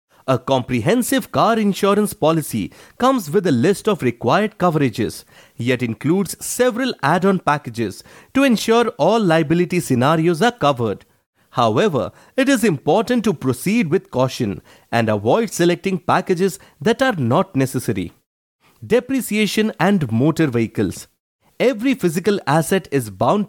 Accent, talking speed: Indian, 125 wpm